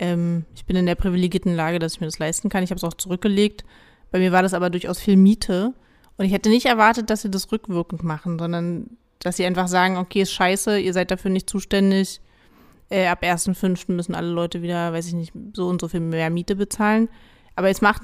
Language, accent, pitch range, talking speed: German, German, 175-200 Hz, 225 wpm